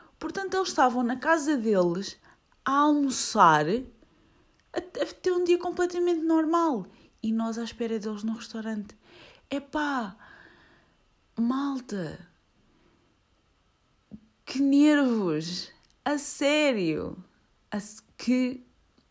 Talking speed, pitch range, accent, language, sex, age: 90 wpm, 170-245 Hz, Brazilian, Portuguese, female, 20-39